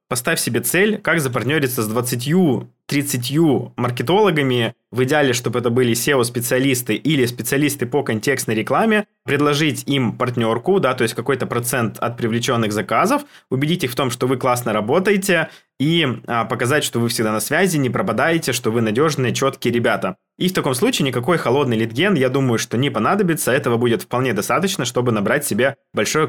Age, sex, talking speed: 20-39, male, 165 wpm